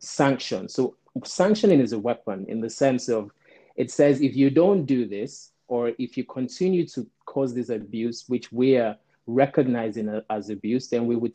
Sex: male